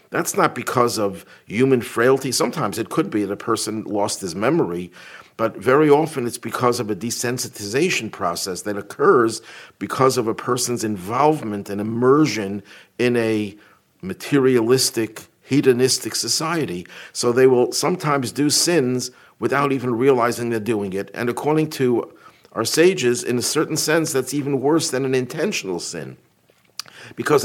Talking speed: 150 wpm